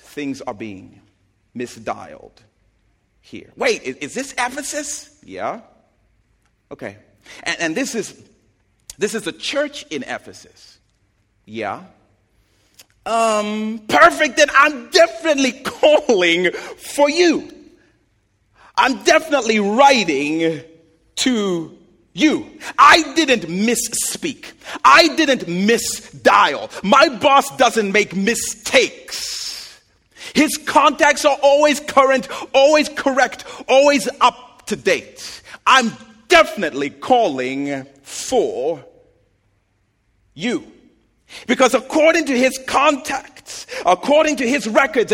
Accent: American